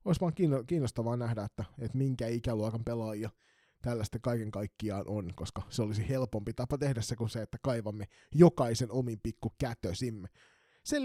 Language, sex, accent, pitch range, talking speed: Finnish, male, native, 115-150 Hz, 150 wpm